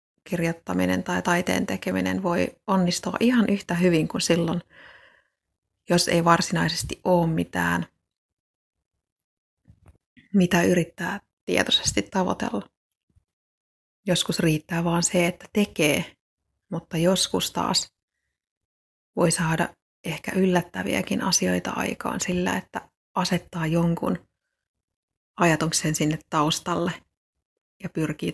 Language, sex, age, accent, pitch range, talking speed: Finnish, female, 30-49, native, 155-180 Hz, 95 wpm